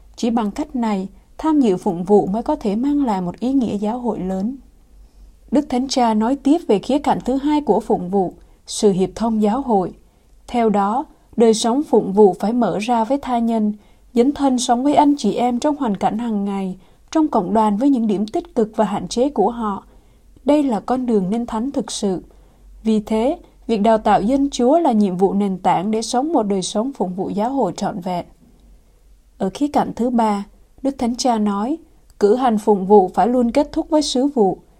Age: 20-39